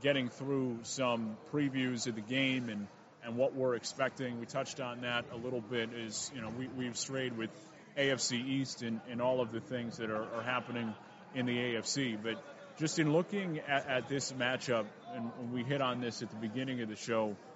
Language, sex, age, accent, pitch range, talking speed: English, male, 30-49, American, 120-135 Hz, 205 wpm